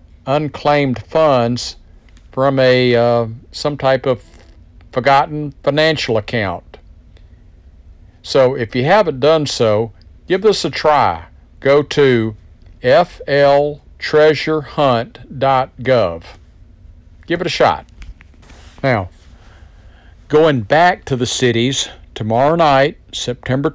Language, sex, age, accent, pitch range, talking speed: English, male, 50-69, American, 90-140 Hz, 95 wpm